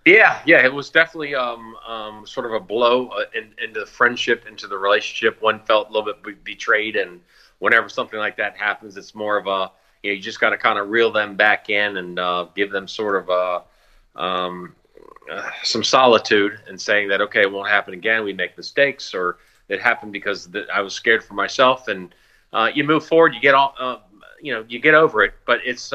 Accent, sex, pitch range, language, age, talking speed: American, male, 100-130 Hz, English, 40-59, 225 wpm